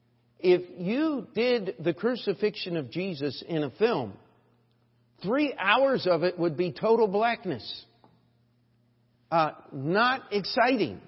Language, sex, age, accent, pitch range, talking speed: English, male, 50-69, American, 120-195 Hz, 115 wpm